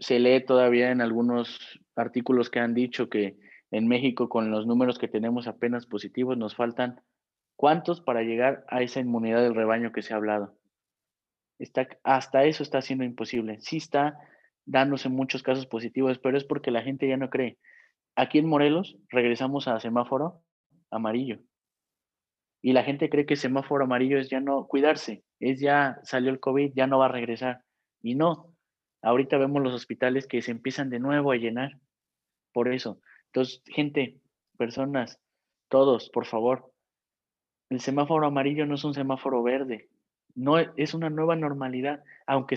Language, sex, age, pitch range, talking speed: Spanish, male, 30-49, 120-140 Hz, 165 wpm